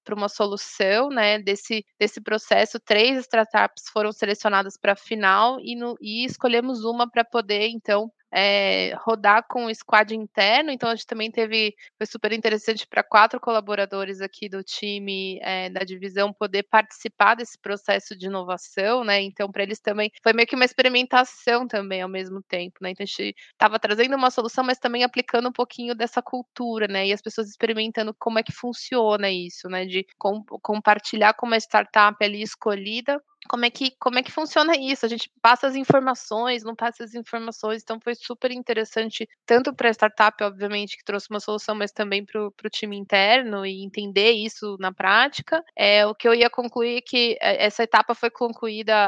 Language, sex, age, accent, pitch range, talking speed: Portuguese, female, 20-39, Brazilian, 205-240 Hz, 180 wpm